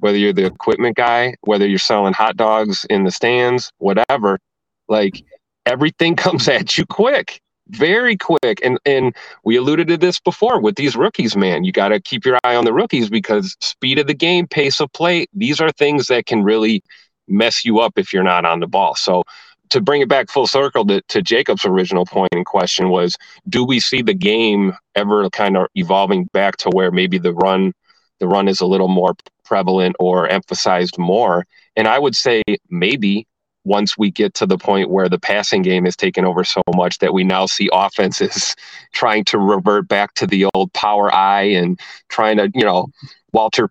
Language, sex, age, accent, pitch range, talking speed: English, male, 30-49, American, 95-125 Hz, 200 wpm